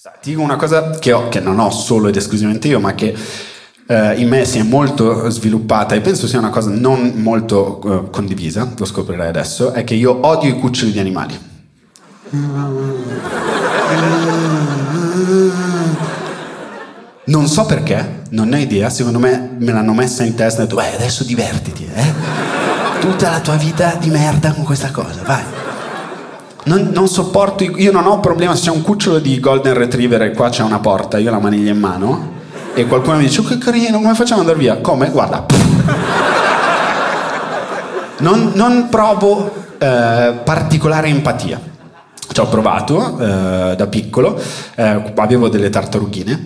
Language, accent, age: Italian, native, 30-49